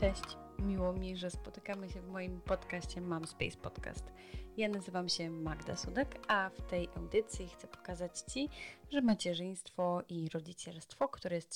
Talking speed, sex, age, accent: 155 wpm, female, 20-39, native